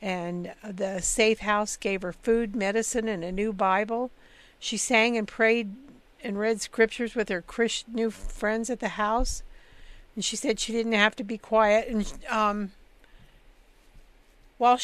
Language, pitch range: English, 200-230 Hz